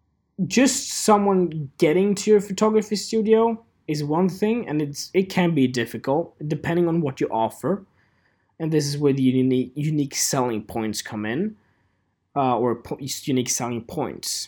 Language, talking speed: English, 155 wpm